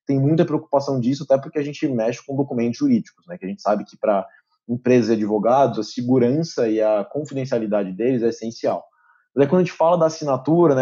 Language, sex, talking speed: Portuguese, male, 215 wpm